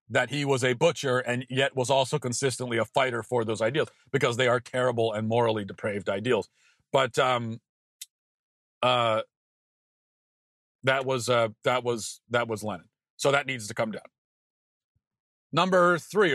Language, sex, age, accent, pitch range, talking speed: English, male, 40-59, American, 115-140 Hz, 155 wpm